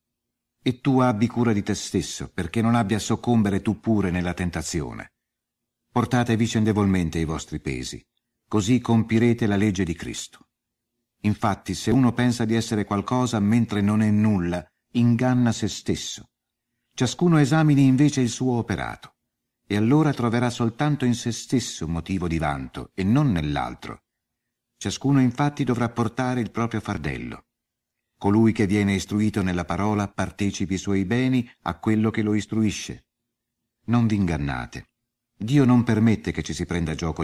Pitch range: 95-120 Hz